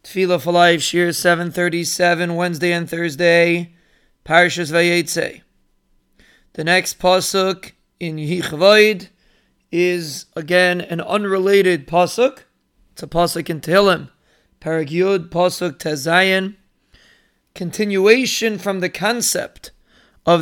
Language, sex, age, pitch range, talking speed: English, male, 30-49, 170-210 Hz, 95 wpm